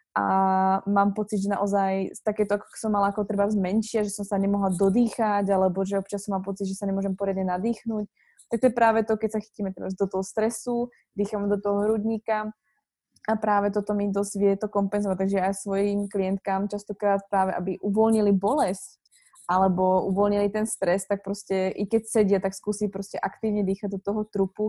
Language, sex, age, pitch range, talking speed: Slovak, female, 20-39, 195-215 Hz, 185 wpm